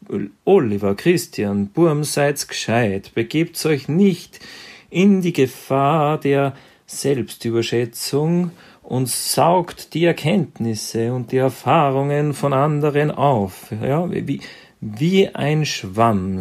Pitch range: 110-150 Hz